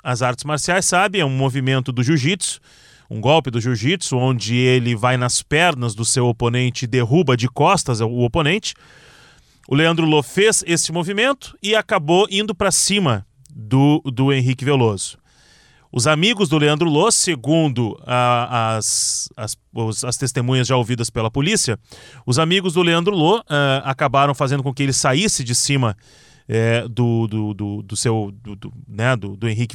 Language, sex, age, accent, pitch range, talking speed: Portuguese, male, 30-49, Brazilian, 125-160 Hz, 170 wpm